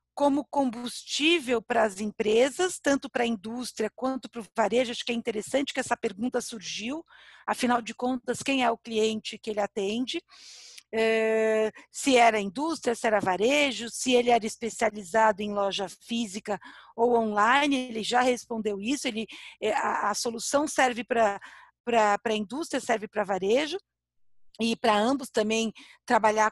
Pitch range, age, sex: 220-275 Hz, 50-69, female